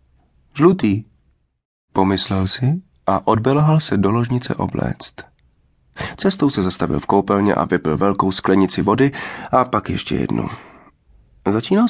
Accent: native